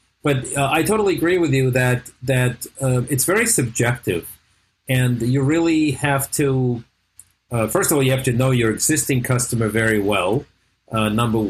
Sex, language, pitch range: male, English, 115-145 Hz